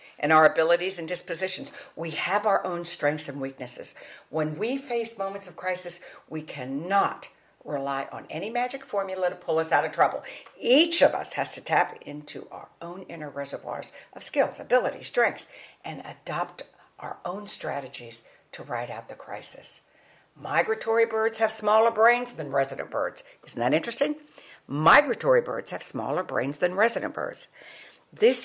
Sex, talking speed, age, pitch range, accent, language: female, 160 wpm, 60-79, 160-245 Hz, American, English